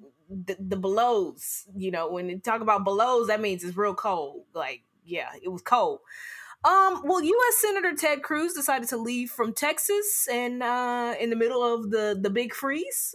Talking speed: 185 wpm